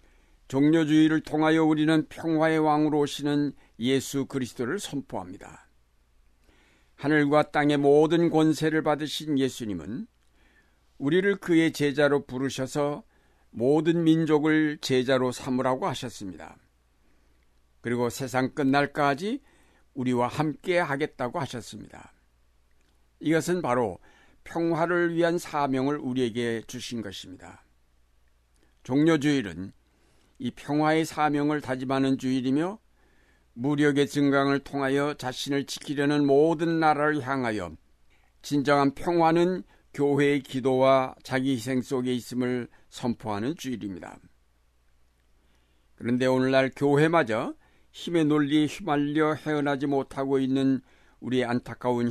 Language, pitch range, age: Korean, 115-150 Hz, 60-79